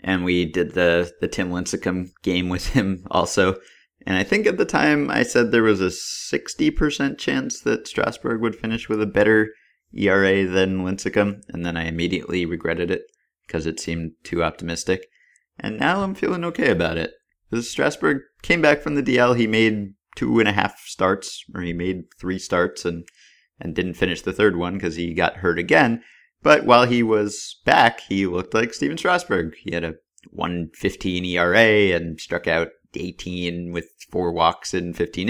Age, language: 30-49, English